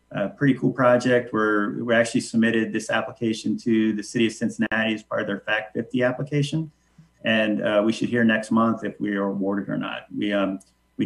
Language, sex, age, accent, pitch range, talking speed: English, male, 40-59, American, 105-120 Hz, 210 wpm